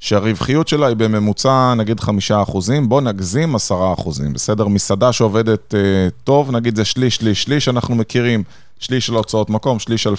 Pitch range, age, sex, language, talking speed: 105-135 Hz, 20-39, male, Hebrew, 170 wpm